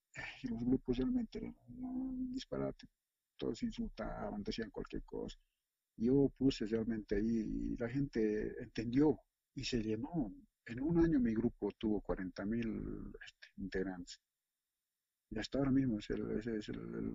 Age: 50-69